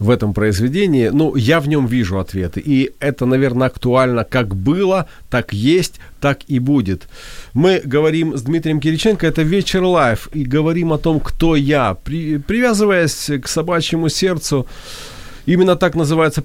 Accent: native